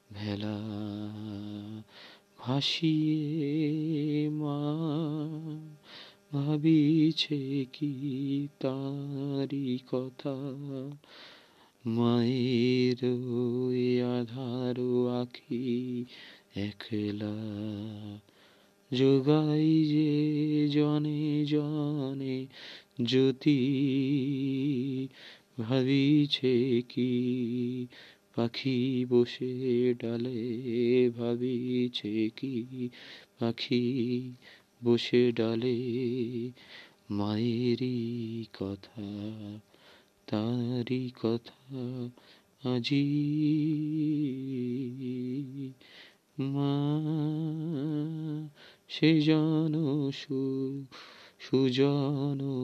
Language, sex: Bengali, male